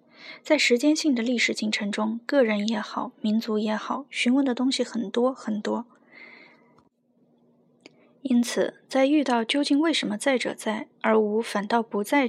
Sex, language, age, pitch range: female, Chinese, 20-39, 210-260 Hz